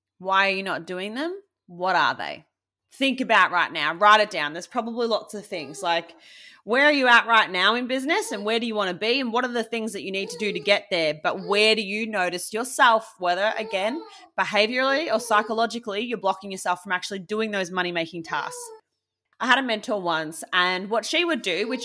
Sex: female